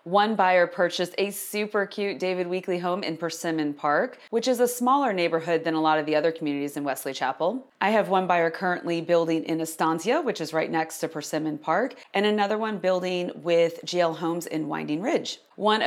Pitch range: 160-205 Hz